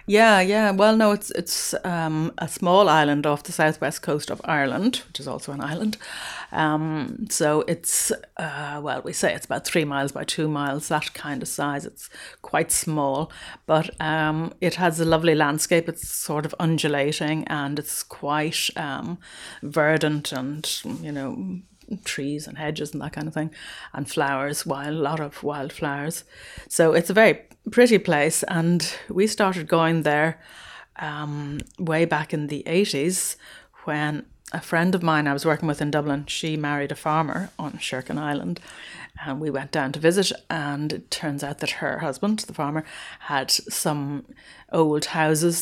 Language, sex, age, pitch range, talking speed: English, female, 30-49, 145-170 Hz, 170 wpm